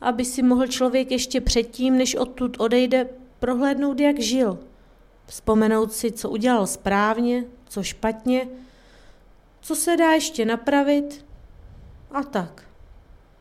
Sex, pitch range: female, 205-285 Hz